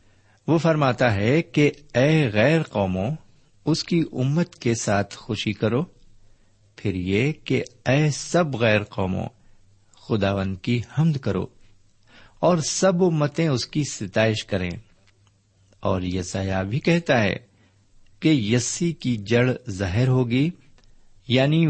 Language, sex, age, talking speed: Urdu, male, 50-69, 120 wpm